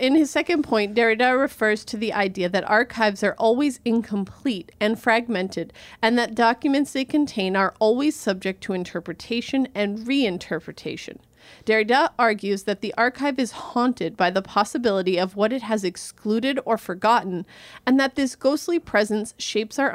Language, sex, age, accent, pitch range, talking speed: English, female, 30-49, American, 195-255 Hz, 155 wpm